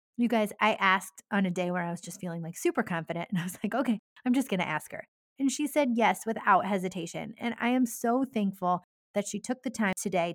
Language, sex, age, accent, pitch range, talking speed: English, female, 30-49, American, 180-225 Hz, 250 wpm